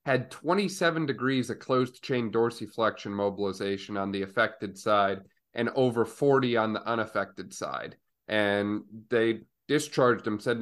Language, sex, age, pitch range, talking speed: English, male, 30-49, 110-125 Hz, 135 wpm